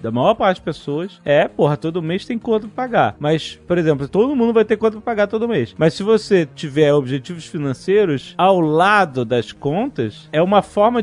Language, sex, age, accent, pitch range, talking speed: Portuguese, male, 30-49, Brazilian, 140-200 Hz, 205 wpm